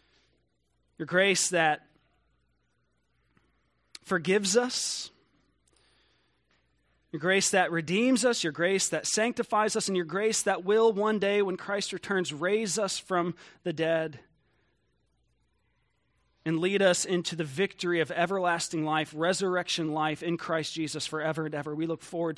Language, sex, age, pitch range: English, male, 30-49, 155-195 Hz